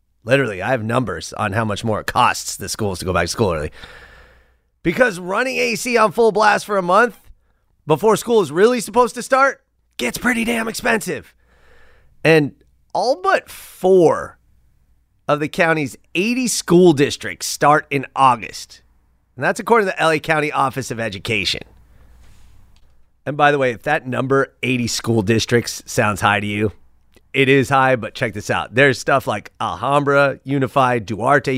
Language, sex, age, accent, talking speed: English, male, 30-49, American, 165 wpm